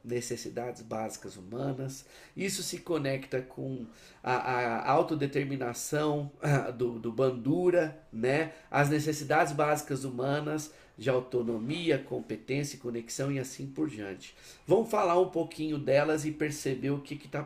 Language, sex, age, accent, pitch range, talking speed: Portuguese, male, 50-69, Brazilian, 135-185 Hz, 125 wpm